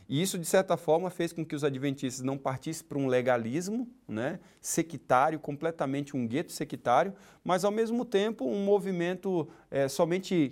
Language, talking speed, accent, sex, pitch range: Portuguese, 165 wpm, Brazilian, male, 145-200 Hz